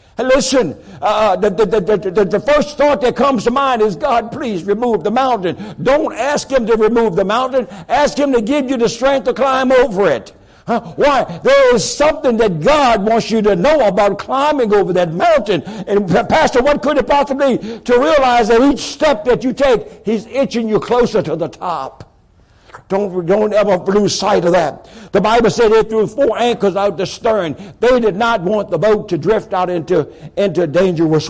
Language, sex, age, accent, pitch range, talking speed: English, male, 60-79, American, 190-235 Hz, 200 wpm